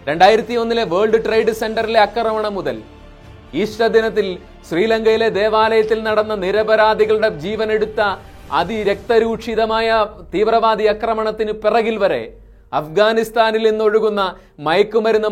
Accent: native